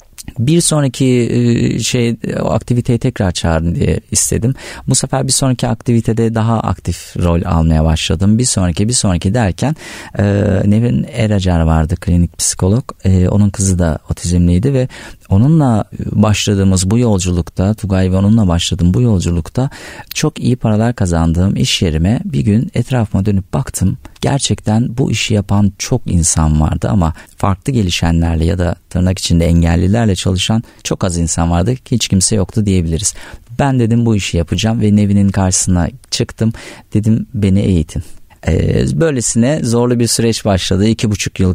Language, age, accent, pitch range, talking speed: Turkish, 40-59, native, 90-110 Hz, 145 wpm